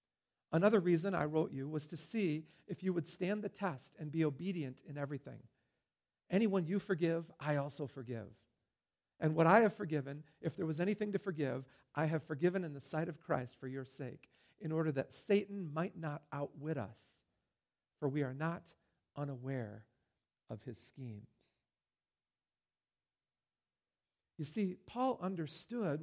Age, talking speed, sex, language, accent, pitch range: 50-69, 155 wpm, male, English, American, 140-190 Hz